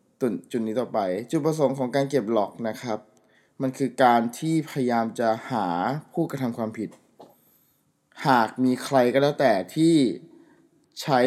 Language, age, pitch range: Thai, 20-39, 110-135 Hz